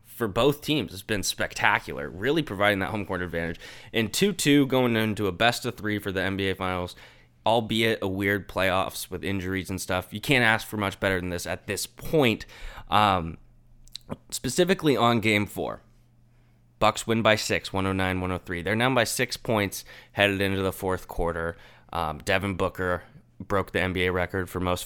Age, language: 20-39, English